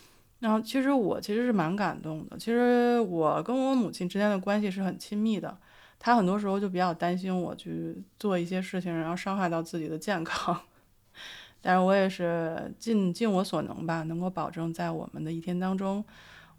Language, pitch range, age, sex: Chinese, 170-205 Hz, 20-39, female